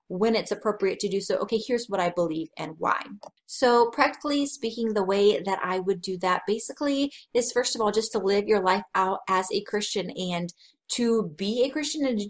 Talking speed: 215 wpm